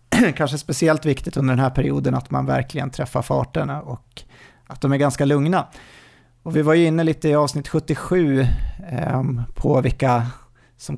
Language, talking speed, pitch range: Swedish, 170 wpm, 125-145 Hz